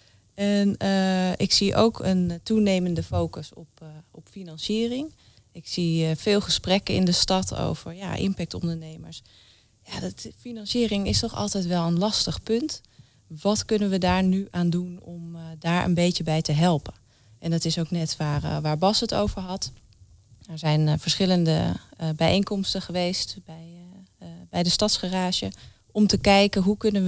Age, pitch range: 20-39, 155-195 Hz